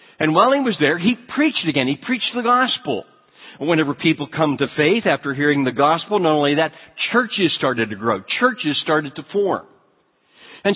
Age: 50-69